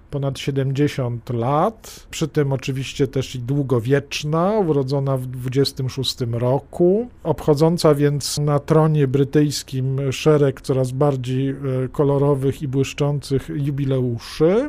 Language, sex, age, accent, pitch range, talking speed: Polish, male, 50-69, native, 135-160 Hz, 100 wpm